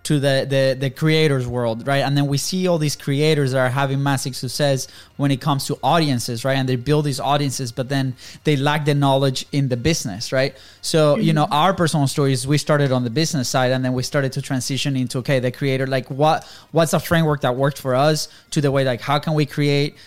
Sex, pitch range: male, 135-155 Hz